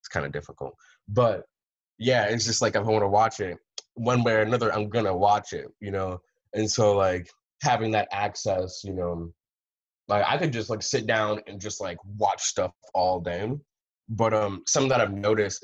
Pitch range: 90-110 Hz